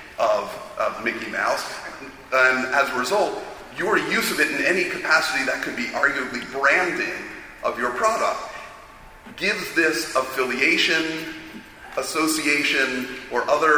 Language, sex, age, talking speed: English, male, 40-59, 125 wpm